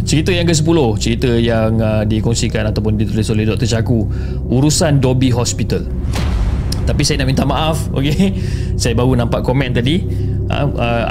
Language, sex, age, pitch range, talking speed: Malay, male, 20-39, 110-135 Hz, 150 wpm